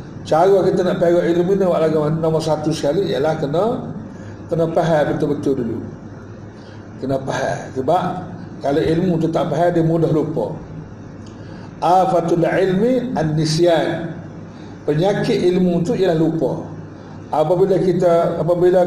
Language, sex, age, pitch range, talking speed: Malay, male, 50-69, 155-185 Hz, 125 wpm